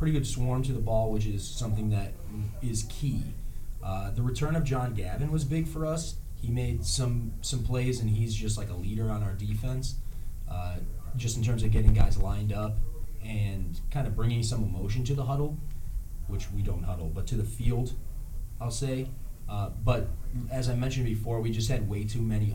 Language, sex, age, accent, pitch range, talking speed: English, male, 20-39, American, 100-120 Hz, 200 wpm